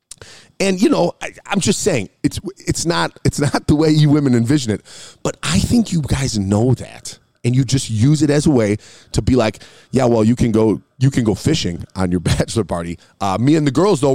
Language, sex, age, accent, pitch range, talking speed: English, male, 30-49, American, 120-165 Hz, 230 wpm